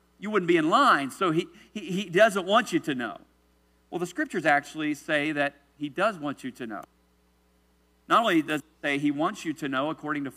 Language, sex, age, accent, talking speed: English, male, 50-69, American, 215 wpm